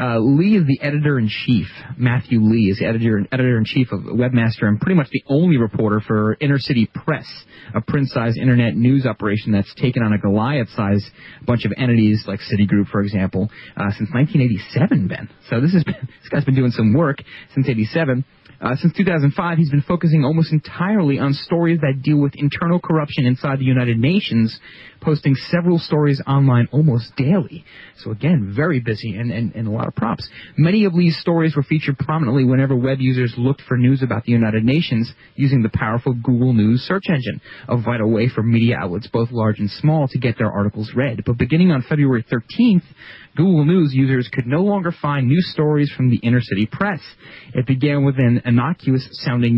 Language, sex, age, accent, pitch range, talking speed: English, male, 30-49, American, 115-155 Hz, 195 wpm